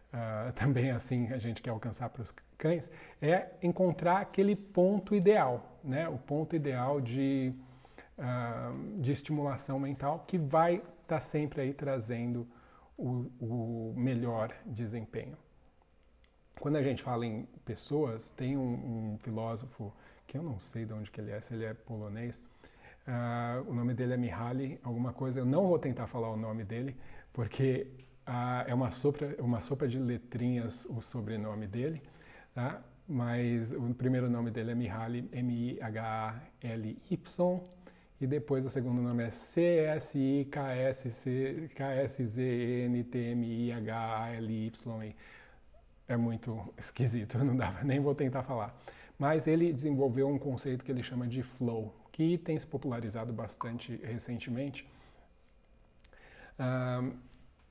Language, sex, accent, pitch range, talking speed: Portuguese, male, Brazilian, 115-140 Hz, 155 wpm